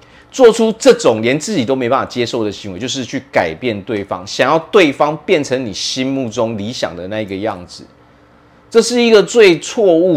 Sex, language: male, Chinese